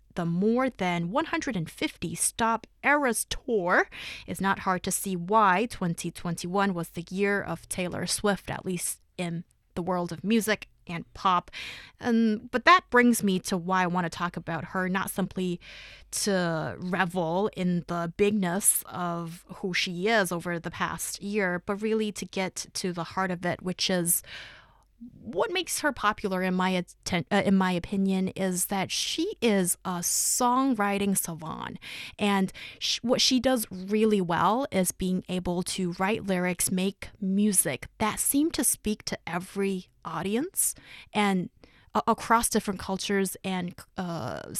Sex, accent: female, American